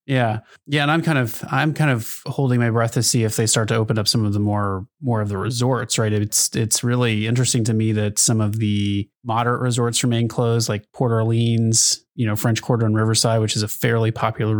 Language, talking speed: English, 235 wpm